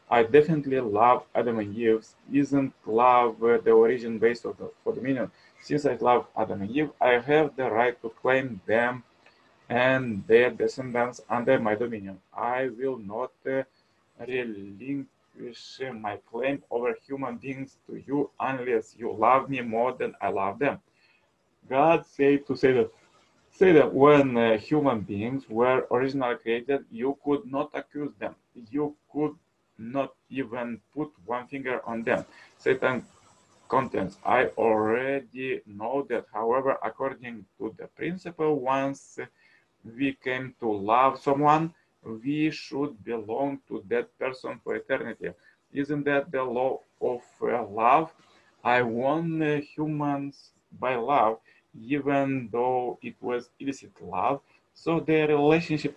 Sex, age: male, 30-49